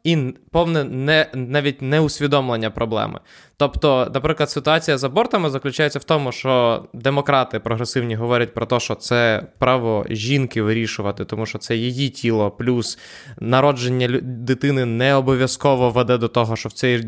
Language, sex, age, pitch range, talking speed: Ukrainian, male, 20-39, 120-150 Hz, 145 wpm